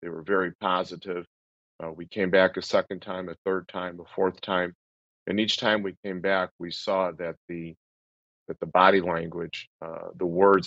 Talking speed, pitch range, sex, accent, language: 190 wpm, 85-95 Hz, male, American, English